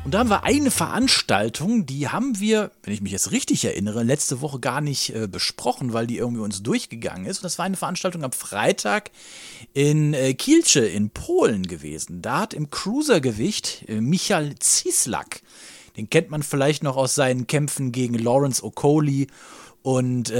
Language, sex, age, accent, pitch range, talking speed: German, male, 40-59, German, 120-185 Hz, 175 wpm